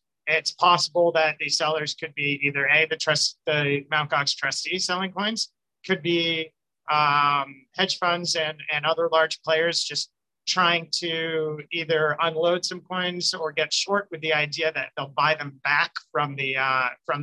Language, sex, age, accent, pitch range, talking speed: English, male, 30-49, American, 150-180 Hz, 170 wpm